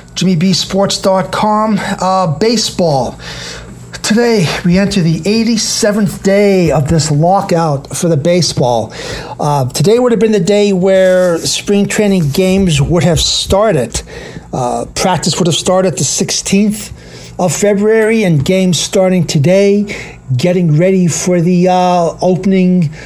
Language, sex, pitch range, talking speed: English, male, 165-200 Hz, 120 wpm